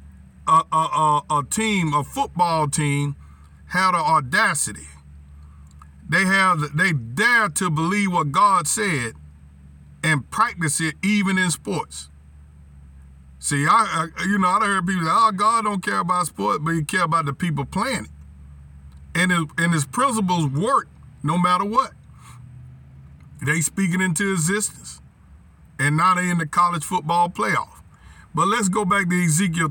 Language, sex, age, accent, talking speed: English, male, 50-69, American, 155 wpm